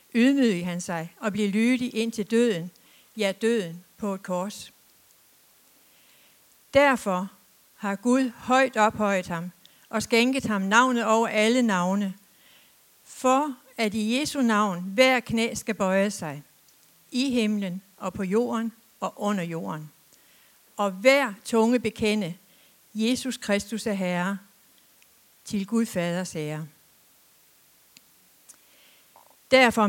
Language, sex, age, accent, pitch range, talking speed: Danish, female, 60-79, native, 190-245 Hz, 115 wpm